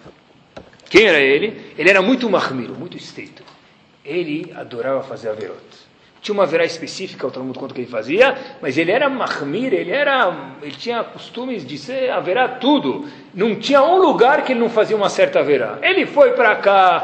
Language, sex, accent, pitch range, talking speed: Portuguese, male, Brazilian, 175-275 Hz, 185 wpm